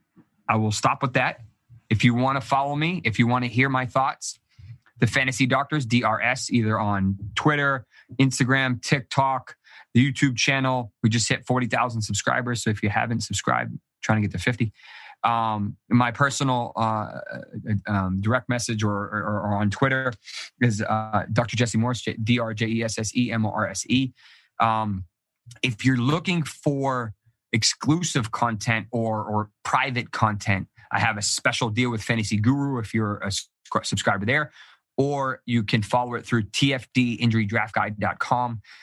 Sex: male